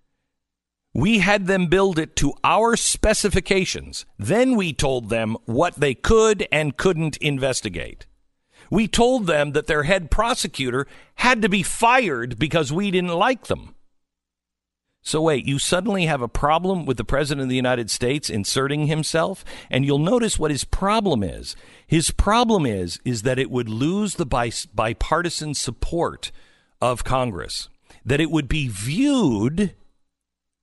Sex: male